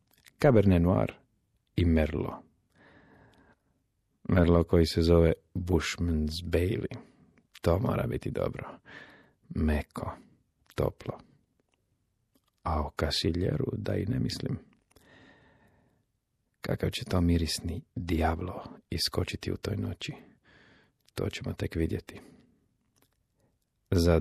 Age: 50-69